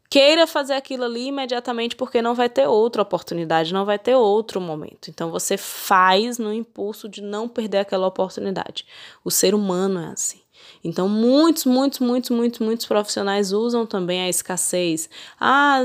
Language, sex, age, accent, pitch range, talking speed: Portuguese, female, 10-29, Brazilian, 190-245 Hz, 165 wpm